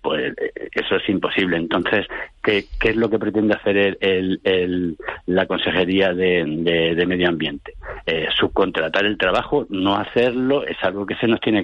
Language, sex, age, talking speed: Spanish, male, 60-79, 170 wpm